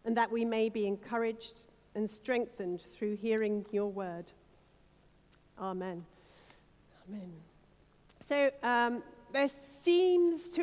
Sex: female